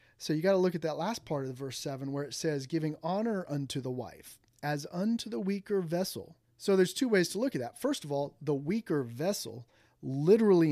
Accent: American